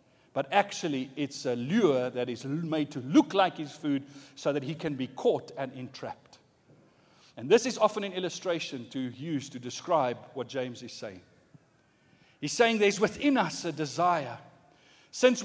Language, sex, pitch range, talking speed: English, male, 160-220 Hz, 165 wpm